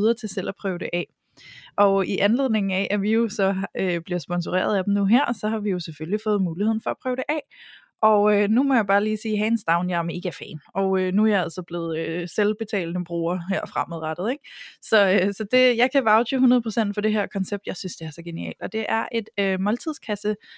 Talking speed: 240 wpm